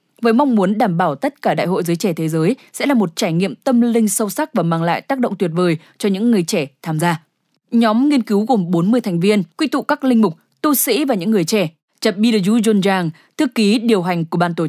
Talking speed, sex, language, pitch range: 255 wpm, female, English, 175-230 Hz